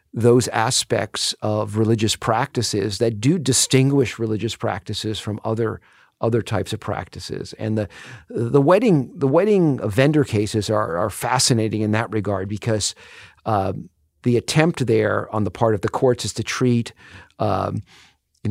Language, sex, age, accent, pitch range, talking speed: English, male, 50-69, American, 105-130 Hz, 150 wpm